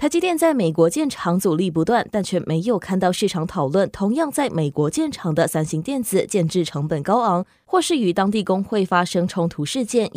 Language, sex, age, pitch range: Chinese, female, 20-39, 170-240 Hz